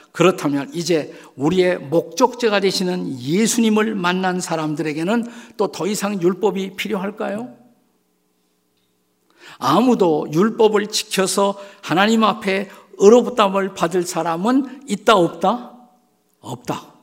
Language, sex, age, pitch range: Korean, male, 50-69, 135-220 Hz